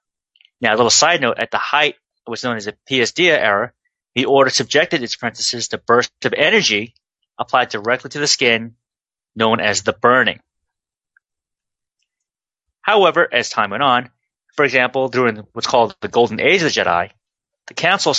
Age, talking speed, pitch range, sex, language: 30-49, 170 wpm, 110-130 Hz, male, English